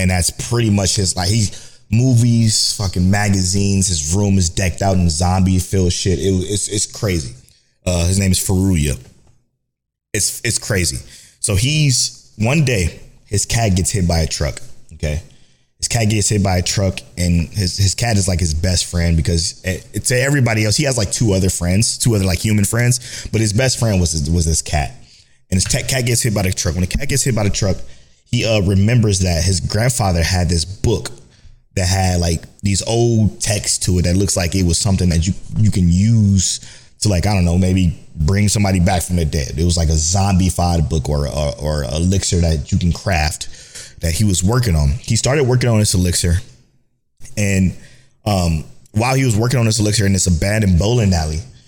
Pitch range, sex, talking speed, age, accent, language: 90-115 Hz, male, 205 wpm, 20-39, American, English